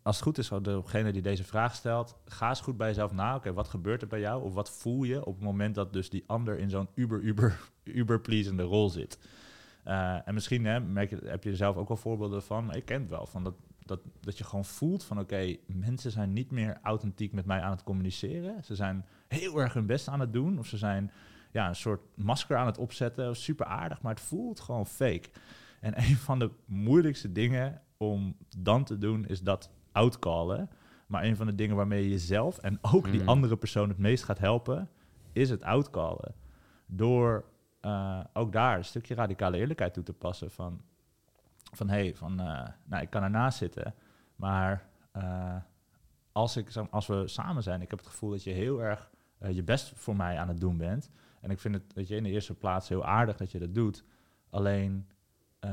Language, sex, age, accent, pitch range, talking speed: Dutch, male, 30-49, Dutch, 95-120 Hz, 215 wpm